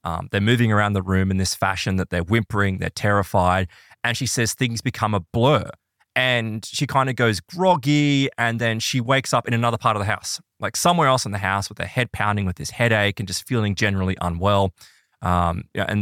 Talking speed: 215 wpm